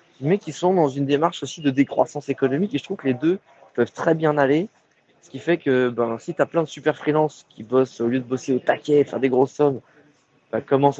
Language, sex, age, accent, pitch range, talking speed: French, male, 20-39, French, 120-150 Hz, 250 wpm